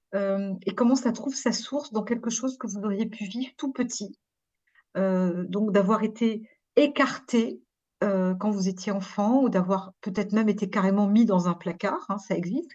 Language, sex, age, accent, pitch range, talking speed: French, female, 50-69, French, 195-255 Hz, 190 wpm